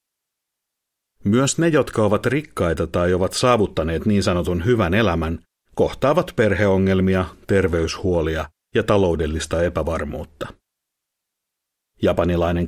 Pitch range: 85-120 Hz